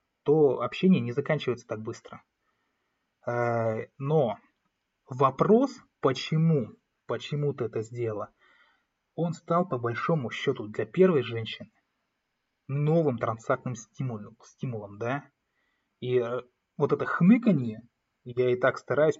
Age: 20-39